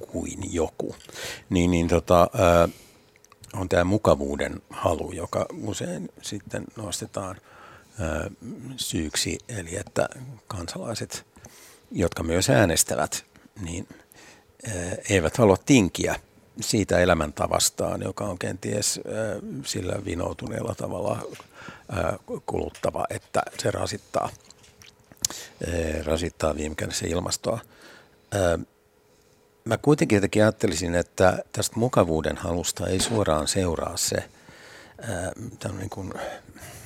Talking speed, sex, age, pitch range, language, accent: 85 wpm, male, 60-79, 85-105 Hz, Finnish, native